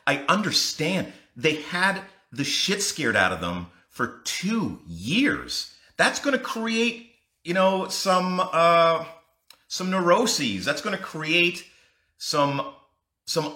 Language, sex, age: English, male, 40-59